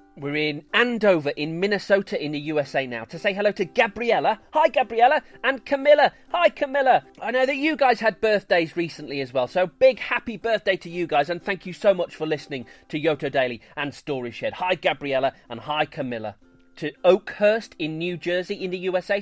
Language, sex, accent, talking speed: English, male, British, 195 wpm